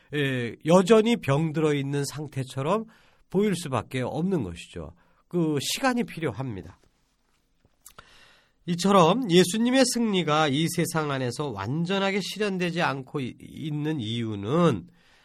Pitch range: 130-195 Hz